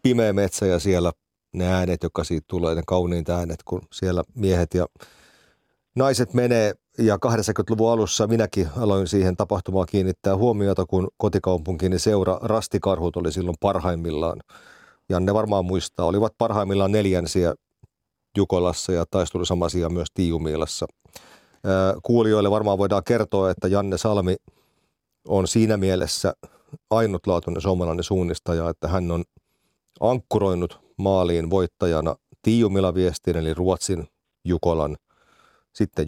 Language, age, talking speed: Finnish, 40-59, 115 wpm